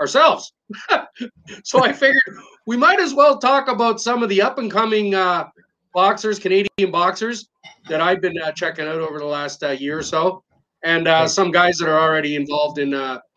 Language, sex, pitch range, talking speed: English, male, 150-200 Hz, 190 wpm